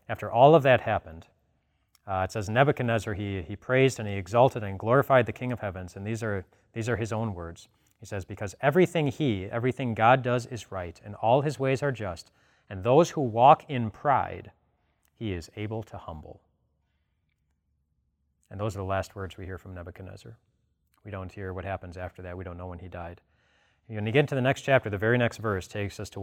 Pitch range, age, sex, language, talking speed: 95-120 Hz, 30-49, male, English, 215 wpm